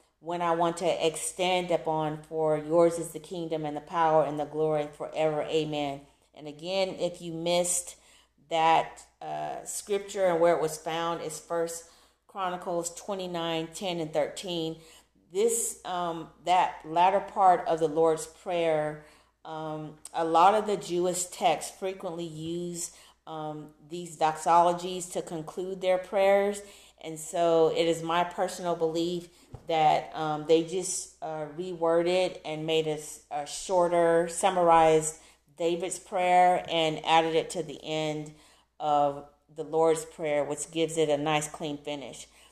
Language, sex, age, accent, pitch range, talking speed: English, female, 40-59, American, 155-175 Hz, 145 wpm